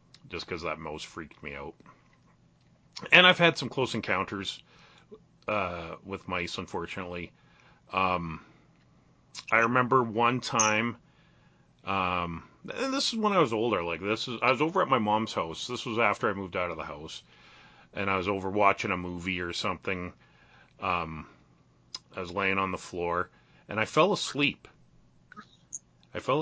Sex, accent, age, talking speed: male, American, 40-59, 160 wpm